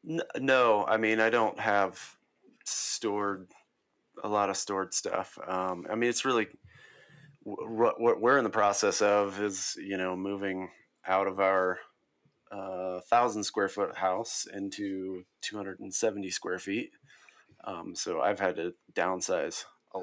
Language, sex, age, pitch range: English, male, 30-49, 95-105 Hz